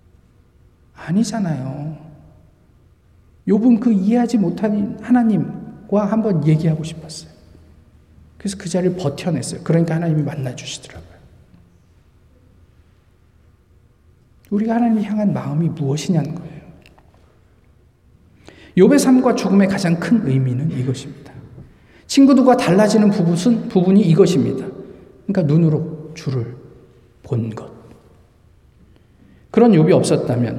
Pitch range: 120-175 Hz